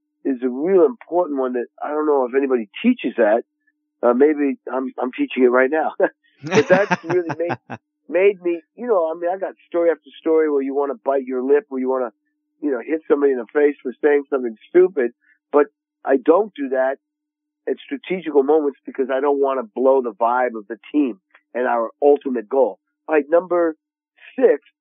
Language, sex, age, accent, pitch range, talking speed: English, male, 50-69, American, 130-185 Hz, 205 wpm